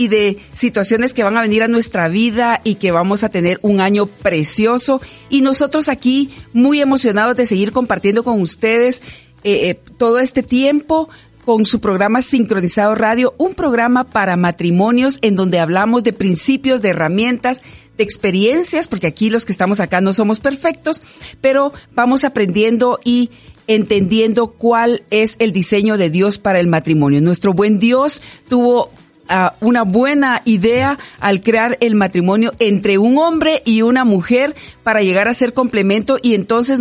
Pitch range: 200-250 Hz